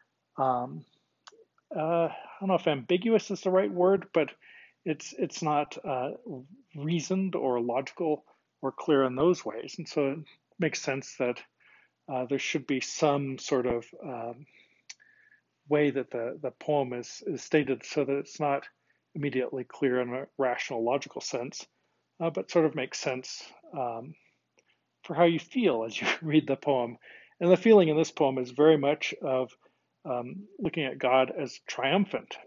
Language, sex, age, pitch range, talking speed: English, male, 40-59, 130-160 Hz, 165 wpm